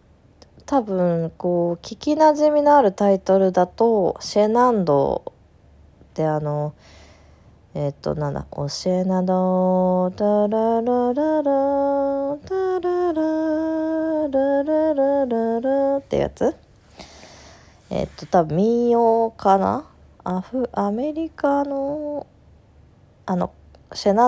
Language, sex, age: Japanese, female, 20-39